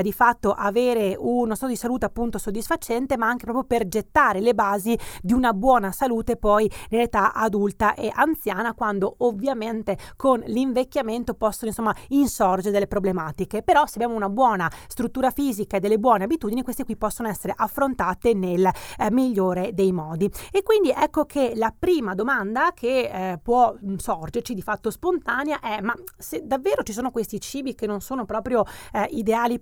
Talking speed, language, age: 170 wpm, Italian, 30-49